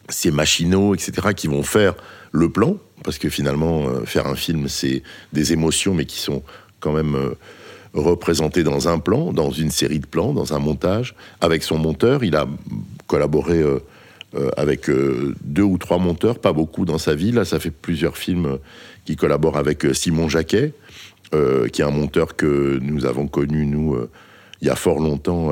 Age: 60-79